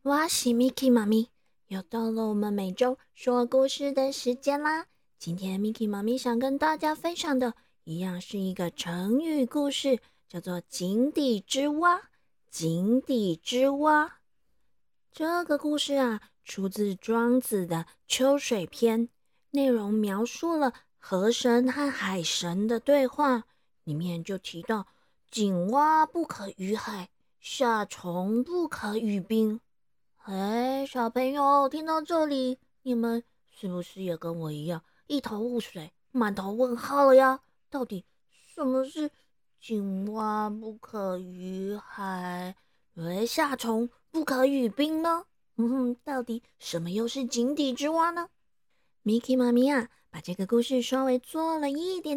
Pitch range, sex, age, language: 200-280 Hz, female, 20-39, Chinese